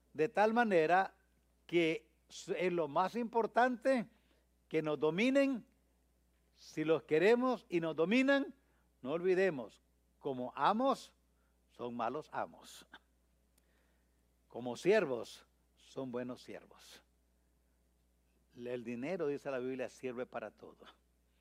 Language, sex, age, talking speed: English, male, 60-79, 105 wpm